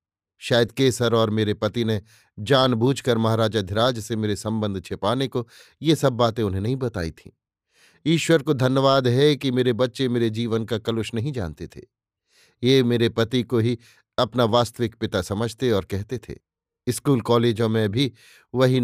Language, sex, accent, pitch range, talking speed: Hindi, male, native, 110-130 Hz, 165 wpm